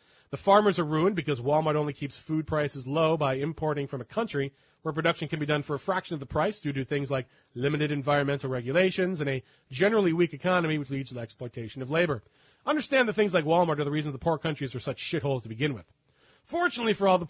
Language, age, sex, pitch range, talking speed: English, 30-49, male, 145-190 Hz, 230 wpm